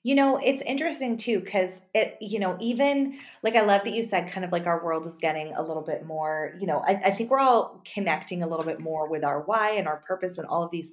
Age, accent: 20-39, American